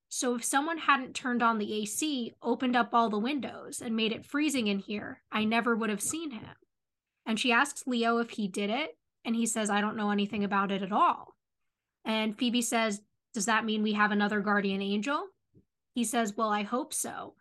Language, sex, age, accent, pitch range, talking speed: English, female, 10-29, American, 220-275 Hz, 210 wpm